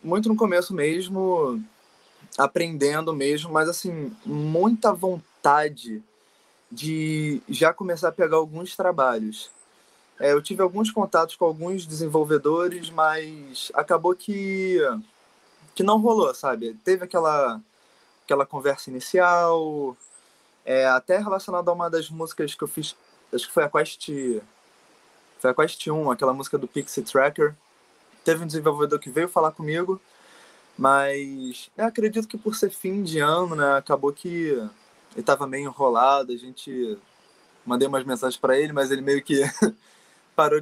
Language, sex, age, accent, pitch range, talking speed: Portuguese, male, 20-39, Brazilian, 145-190 Hz, 140 wpm